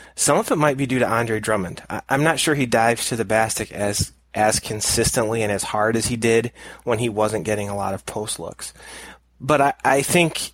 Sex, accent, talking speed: male, American, 230 wpm